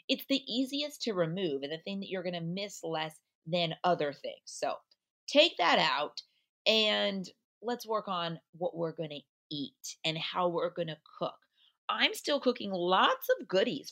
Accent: American